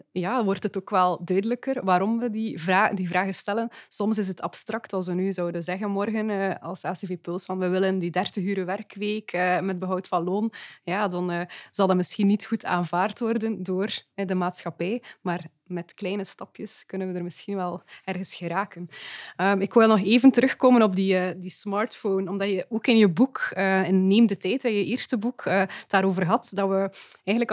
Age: 20-39